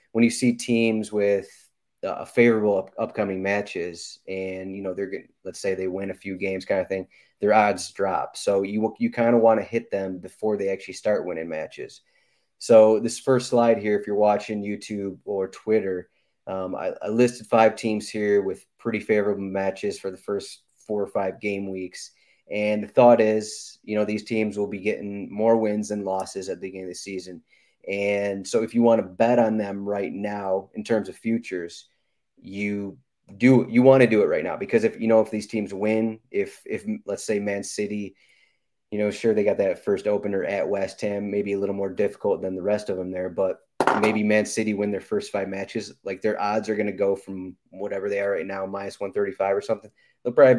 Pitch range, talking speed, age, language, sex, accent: 95-110 Hz, 215 wpm, 30-49, English, male, American